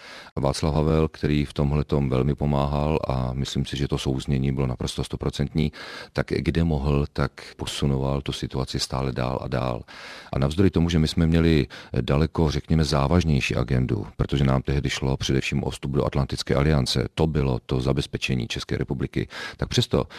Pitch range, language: 65-80 Hz, Czech